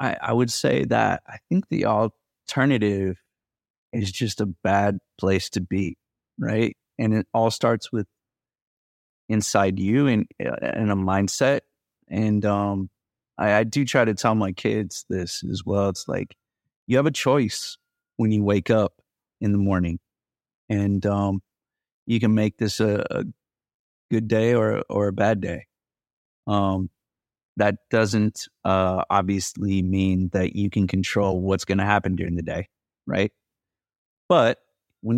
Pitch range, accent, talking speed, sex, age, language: 95-115 Hz, American, 150 wpm, male, 30-49, English